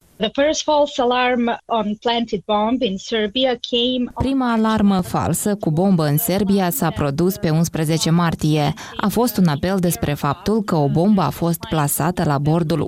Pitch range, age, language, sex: 155-210 Hz, 20-39, Romanian, female